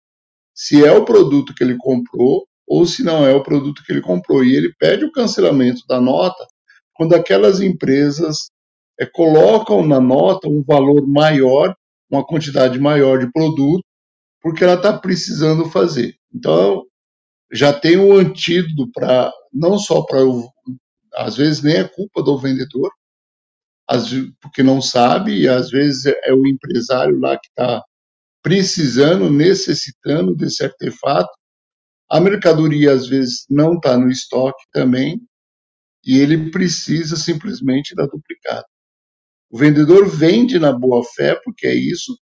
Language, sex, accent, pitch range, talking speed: Portuguese, male, Brazilian, 130-175 Hz, 140 wpm